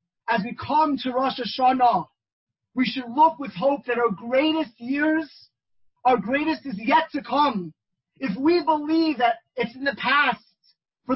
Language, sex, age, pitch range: English, male, 30-49, 215-315 Hz